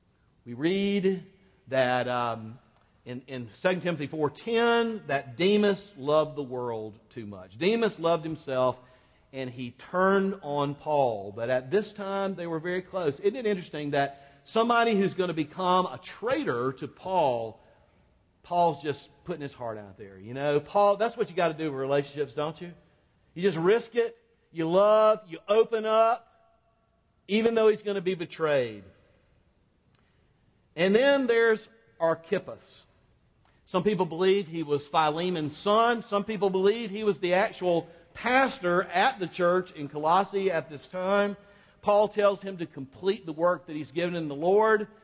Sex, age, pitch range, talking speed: male, 50-69, 150-205 Hz, 160 wpm